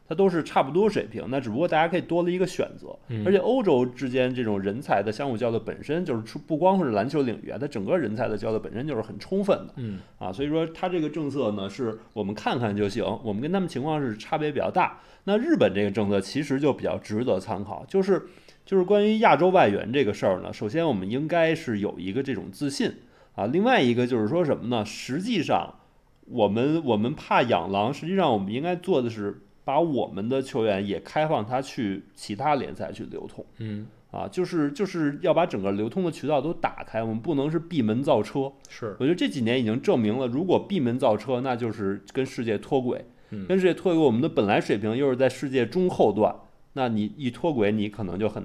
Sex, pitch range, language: male, 110-160 Hz, Chinese